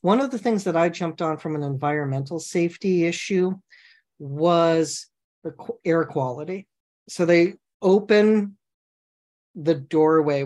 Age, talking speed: 40-59, 125 wpm